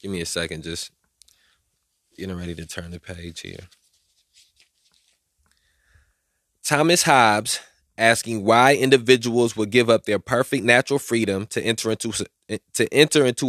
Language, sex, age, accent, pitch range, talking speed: English, male, 20-39, American, 95-125 Hz, 135 wpm